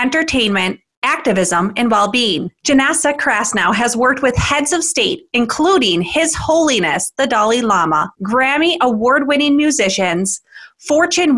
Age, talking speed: 30-49, 115 wpm